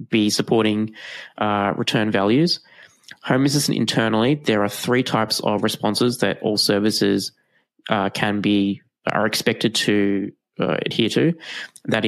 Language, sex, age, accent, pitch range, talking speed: English, male, 20-39, Australian, 100-120 Hz, 135 wpm